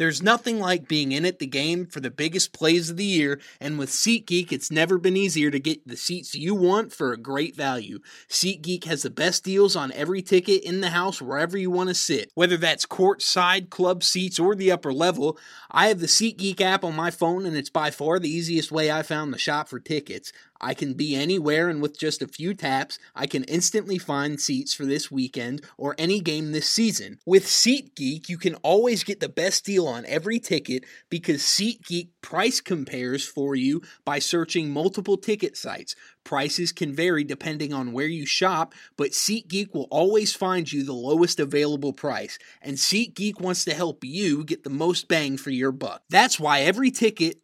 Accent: American